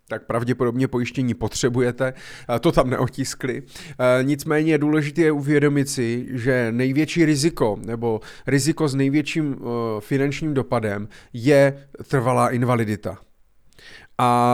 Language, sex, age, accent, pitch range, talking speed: Czech, male, 30-49, native, 120-150 Hz, 105 wpm